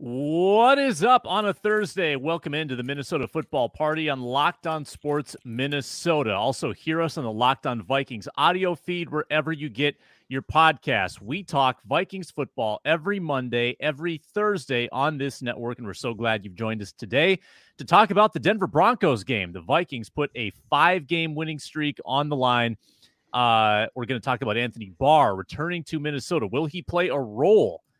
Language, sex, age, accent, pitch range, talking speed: English, male, 30-49, American, 115-160 Hz, 180 wpm